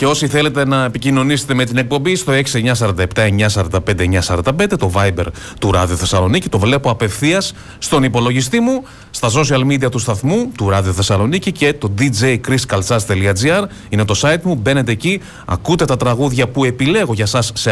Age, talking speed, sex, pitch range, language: 30-49, 155 wpm, male, 105-150 Hz, Greek